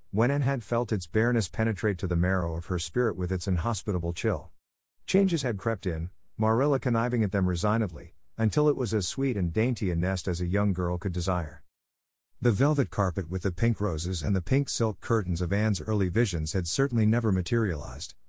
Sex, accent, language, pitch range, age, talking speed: male, American, English, 90-115 Hz, 50-69, 200 wpm